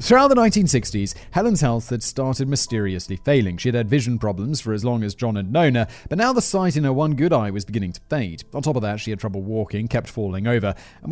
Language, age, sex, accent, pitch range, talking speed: English, 30-49, male, British, 105-150 Hz, 255 wpm